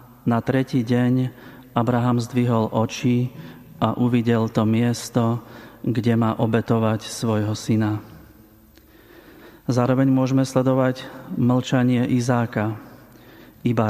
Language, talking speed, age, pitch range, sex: Slovak, 90 wpm, 40-59, 110-125 Hz, male